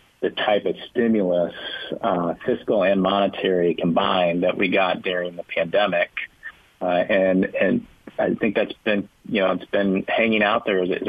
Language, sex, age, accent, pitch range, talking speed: English, male, 40-59, American, 90-105 Hz, 160 wpm